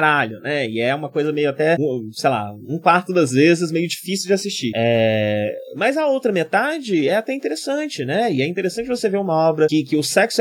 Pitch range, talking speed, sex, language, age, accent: 125-180 Hz, 215 wpm, male, Portuguese, 20-39, Brazilian